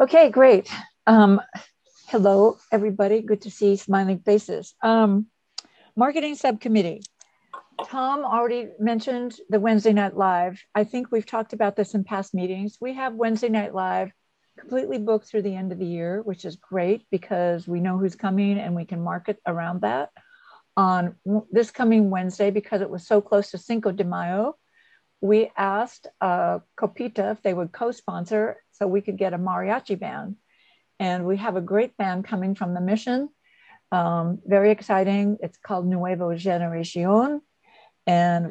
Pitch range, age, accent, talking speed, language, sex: 185-220 Hz, 60-79, American, 160 wpm, English, female